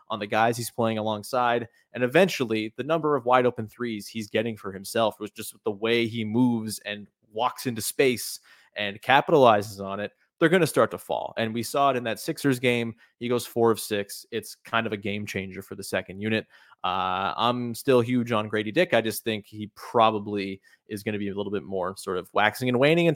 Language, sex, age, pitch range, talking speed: English, male, 20-39, 105-125 Hz, 230 wpm